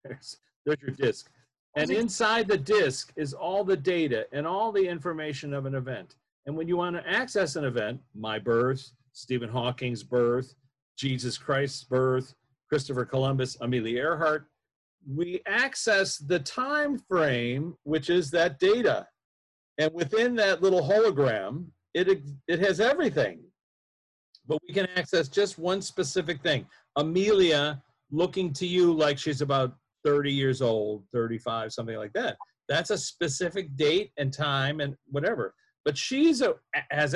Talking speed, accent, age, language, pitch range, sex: 145 wpm, American, 50-69, English, 130-180 Hz, male